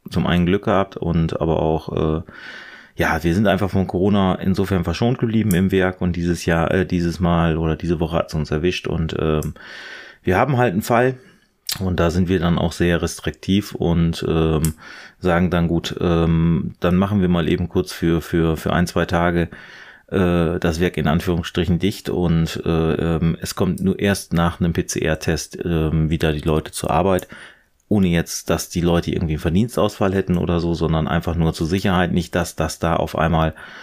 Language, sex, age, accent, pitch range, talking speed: German, male, 30-49, German, 85-95 Hz, 195 wpm